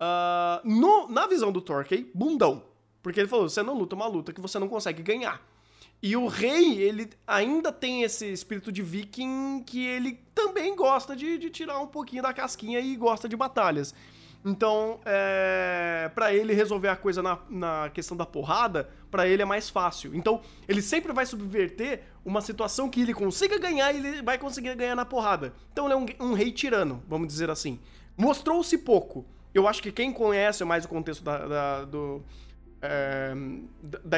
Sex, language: male, Portuguese